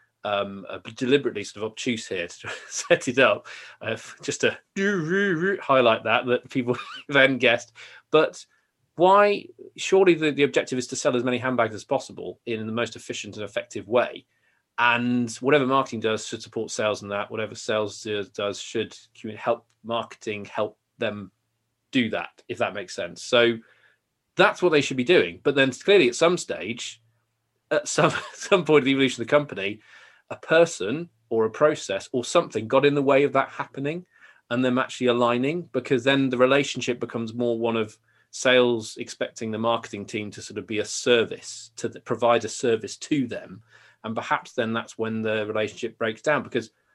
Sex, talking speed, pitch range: male, 190 wpm, 110-140 Hz